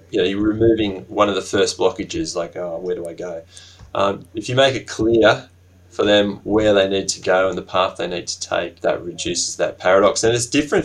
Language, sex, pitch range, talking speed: English, male, 90-110 Hz, 230 wpm